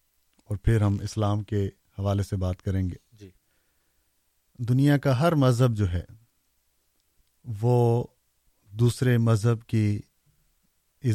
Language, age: Urdu, 40-59